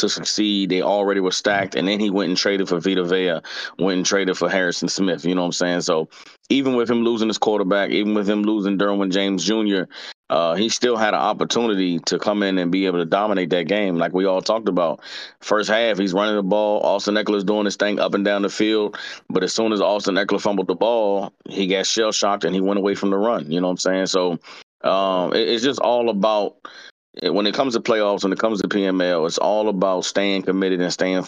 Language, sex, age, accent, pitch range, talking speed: English, male, 30-49, American, 95-105 Hz, 240 wpm